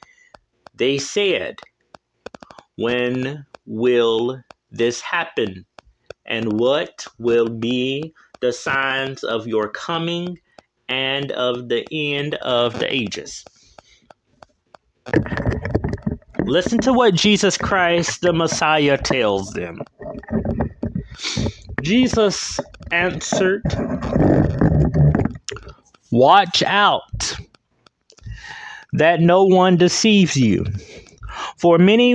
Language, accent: English, American